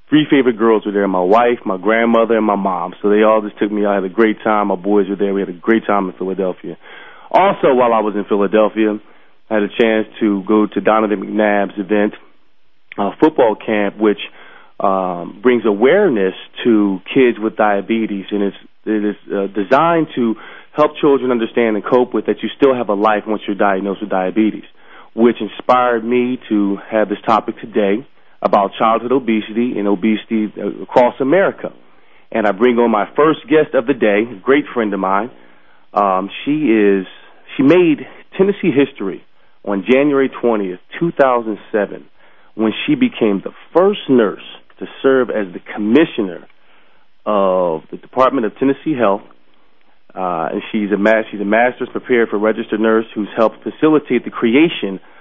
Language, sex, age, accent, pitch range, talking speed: English, male, 30-49, American, 100-125 Hz, 175 wpm